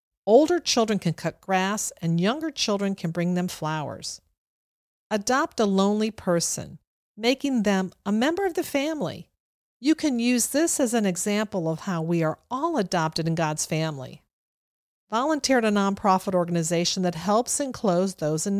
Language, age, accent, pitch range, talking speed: English, 50-69, American, 180-250 Hz, 160 wpm